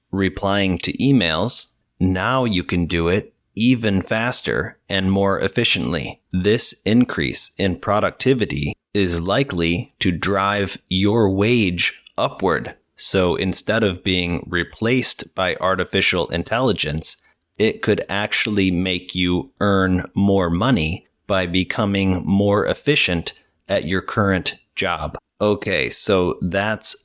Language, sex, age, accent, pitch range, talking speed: English, male, 30-49, American, 90-105 Hz, 115 wpm